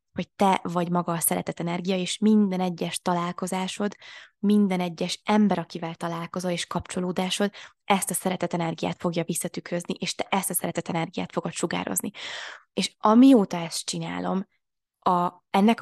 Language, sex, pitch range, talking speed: Hungarian, female, 180-210 Hz, 145 wpm